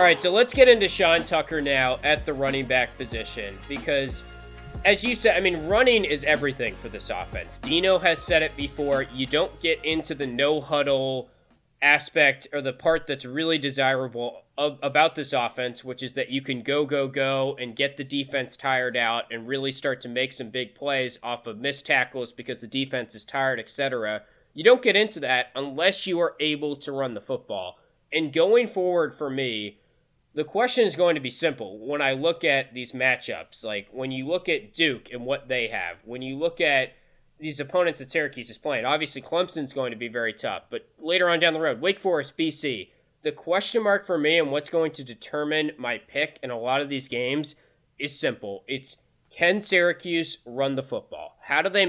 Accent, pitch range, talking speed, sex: American, 130-160 Hz, 205 wpm, male